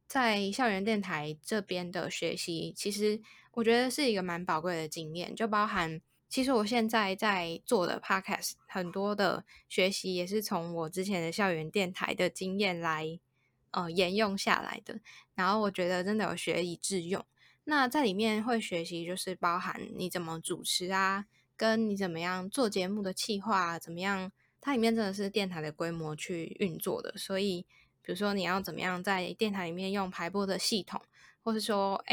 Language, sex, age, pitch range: Chinese, female, 10-29, 175-215 Hz